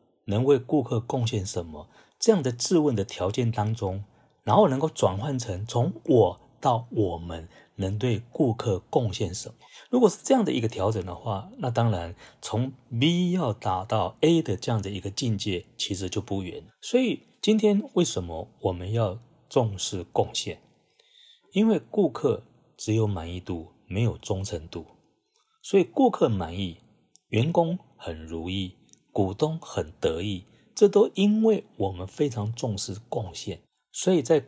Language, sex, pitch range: Chinese, male, 95-140 Hz